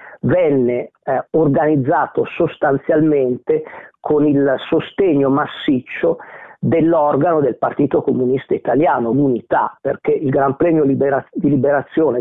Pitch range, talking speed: 140-180 Hz, 100 wpm